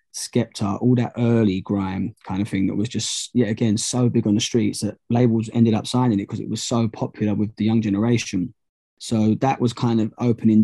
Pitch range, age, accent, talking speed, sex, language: 105-120 Hz, 20-39, British, 220 wpm, male, English